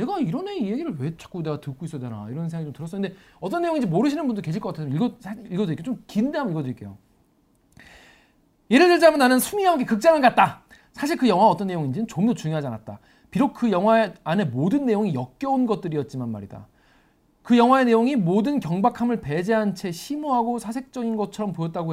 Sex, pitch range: male, 175-240 Hz